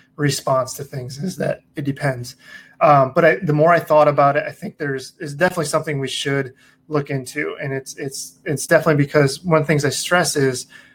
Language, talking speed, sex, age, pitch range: English, 215 wpm, male, 20-39, 135-160 Hz